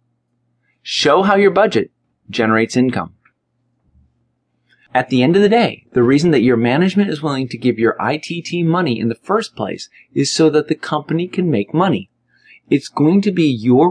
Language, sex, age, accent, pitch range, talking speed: English, male, 30-49, American, 120-165 Hz, 180 wpm